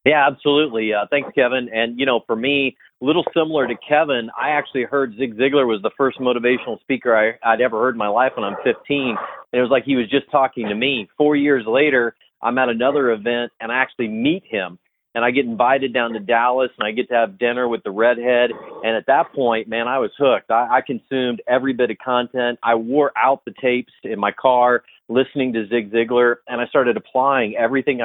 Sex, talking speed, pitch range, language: male, 220 wpm, 120-135 Hz, English